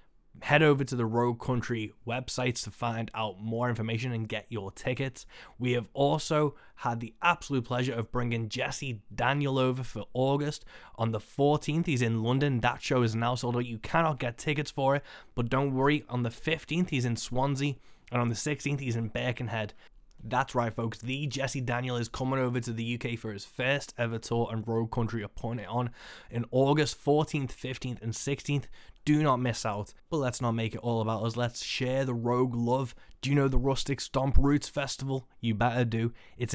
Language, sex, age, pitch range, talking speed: English, male, 20-39, 115-135 Hz, 195 wpm